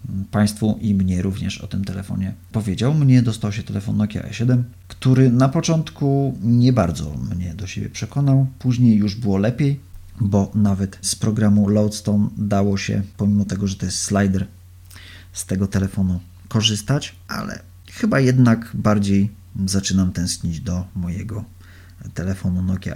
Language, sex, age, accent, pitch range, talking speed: Polish, male, 40-59, native, 90-110 Hz, 140 wpm